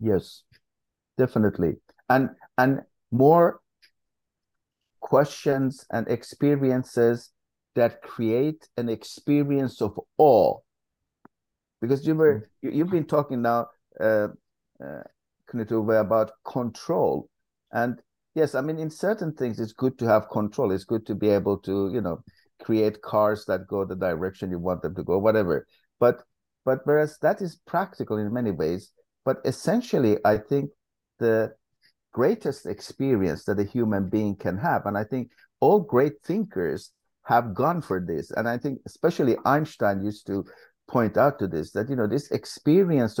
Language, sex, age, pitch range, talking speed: English, male, 50-69, 105-145 Hz, 150 wpm